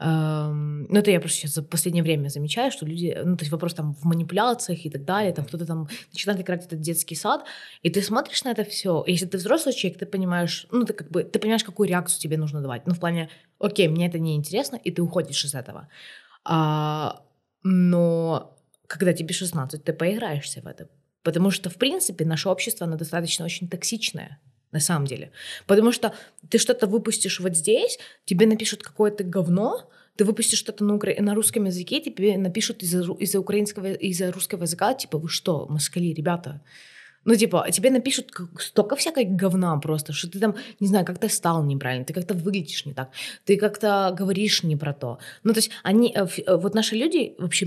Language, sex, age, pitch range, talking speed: Ukrainian, female, 20-39, 165-220 Hz, 190 wpm